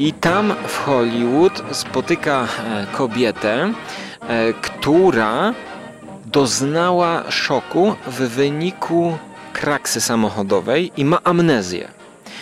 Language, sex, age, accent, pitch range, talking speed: Polish, male, 30-49, native, 115-165 Hz, 75 wpm